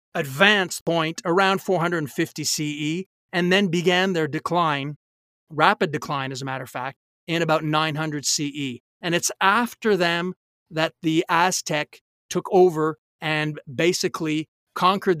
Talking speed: 130 wpm